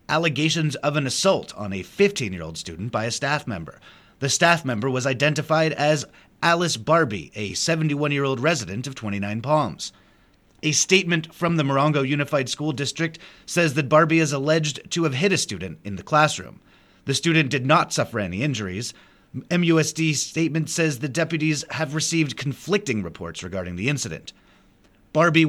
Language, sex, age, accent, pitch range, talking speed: English, male, 30-49, American, 125-160 Hz, 160 wpm